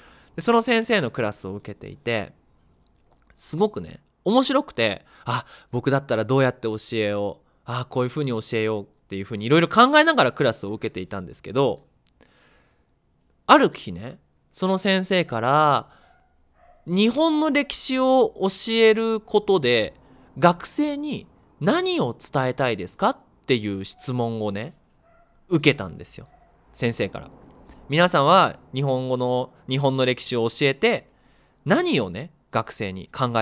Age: 20-39